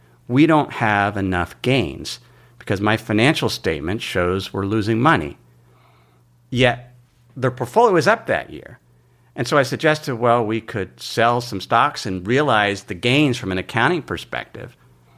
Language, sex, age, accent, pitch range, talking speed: English, male, 50-69, American, 95-140 Hz, 150 wpm